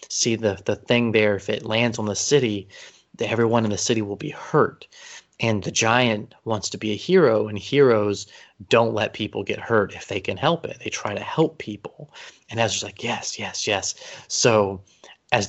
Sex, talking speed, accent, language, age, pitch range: male, 200 wpm, American, English, 30-49, 105-120 Hz